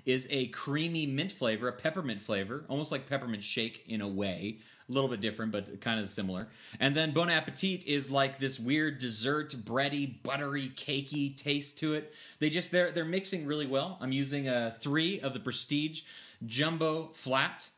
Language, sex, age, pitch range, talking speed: English, male, 30-49, 115-150 Hz, 180 wpm